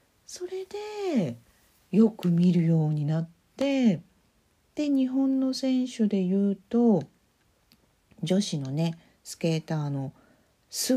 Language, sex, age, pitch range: Japanese, female, 50-69, 155-225 Hz